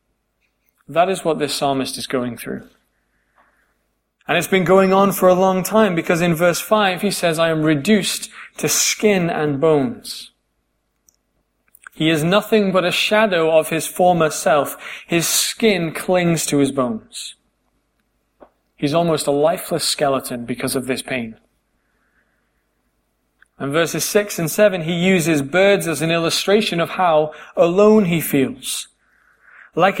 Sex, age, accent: male, 30-49, British